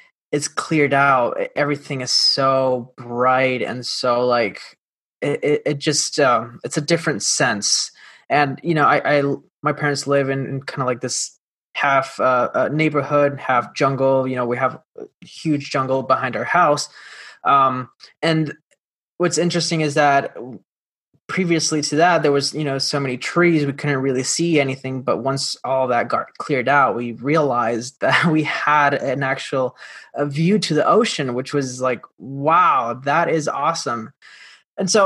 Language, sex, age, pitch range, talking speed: English, male, 20-39, 130-155 Hz, 165 wpm